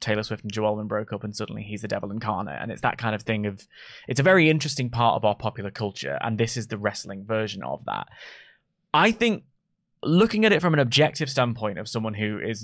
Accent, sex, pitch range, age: British, male, 115-155 Hz, 20-39